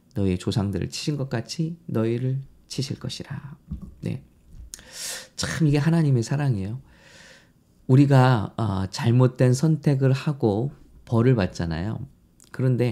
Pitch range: 110-145 Hz